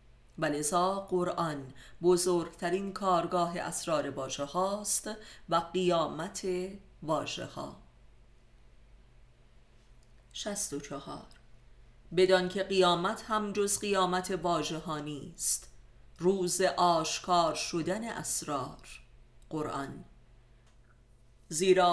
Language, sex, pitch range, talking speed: Persian, female, 150-185 Hz, 70 wpm